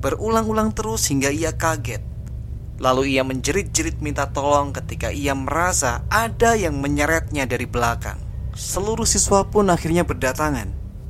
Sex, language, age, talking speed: male, Indonesian, 20-39, 125 wpm